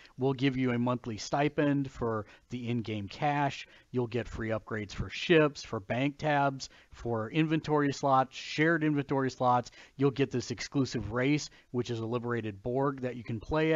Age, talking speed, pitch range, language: 40-59, 170 wpm, 125-185 Hz, English